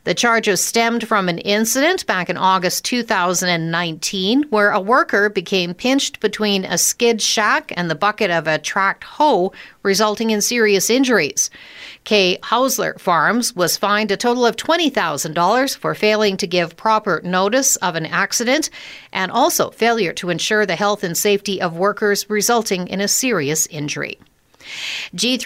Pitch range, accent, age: 180-230 Hz, American, 50-69